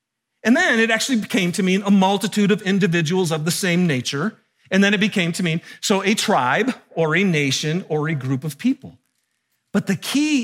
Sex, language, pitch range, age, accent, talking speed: male, English, 155-230 Hz, 50-69, American, 200 wpm